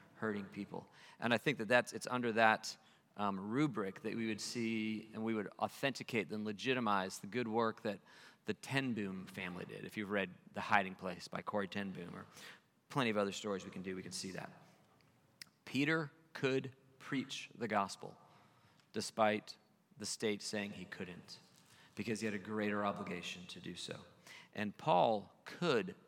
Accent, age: American, 40-59